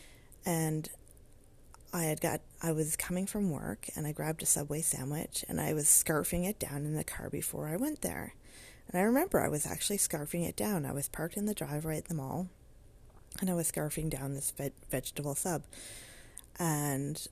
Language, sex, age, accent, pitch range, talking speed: English, female, 30-49, American, 150-195 Hz, 195 wpm